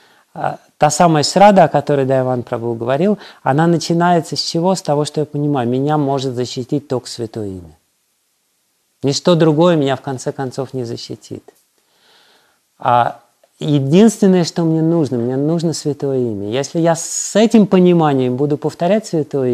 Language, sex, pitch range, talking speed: Russian, male, 130-165 Hz, 145 wpm